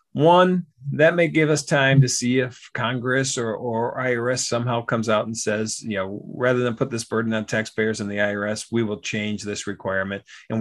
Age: 50-69